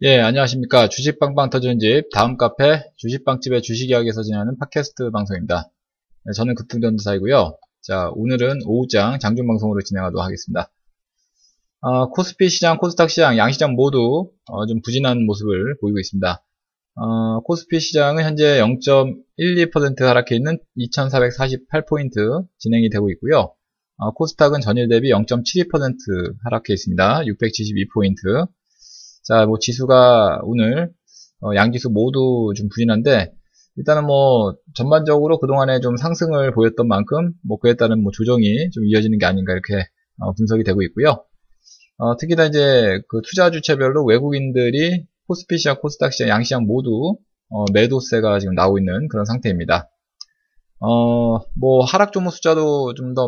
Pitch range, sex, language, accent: 110-150 Hz, male, Korean, native